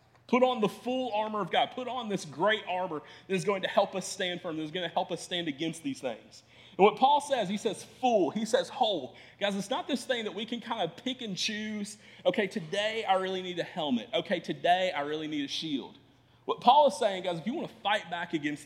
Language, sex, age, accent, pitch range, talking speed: English, male, 30-49, American, 145-200 Hz, 255 wpm